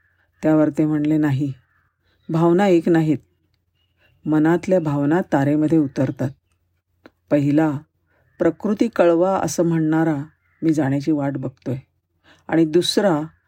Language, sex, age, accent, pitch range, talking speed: Marathi, female, 50-69, native, 135-170 Hz, 100 wpm